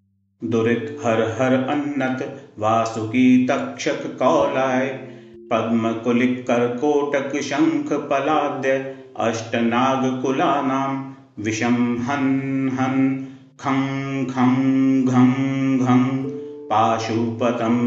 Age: 40-59